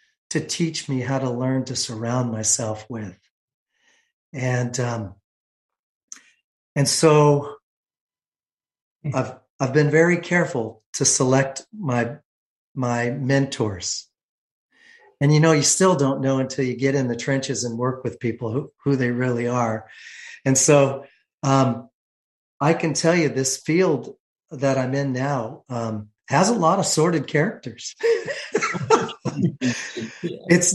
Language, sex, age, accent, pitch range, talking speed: English, male, 40-59, American, 125-165 Hz, 130 wpm